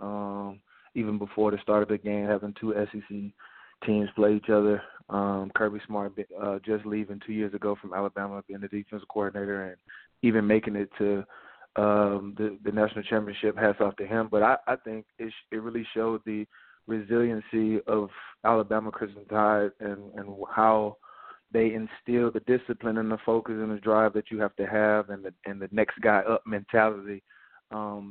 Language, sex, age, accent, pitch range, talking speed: English, male, 20-39, American, 105-115 Hz, 185 wpm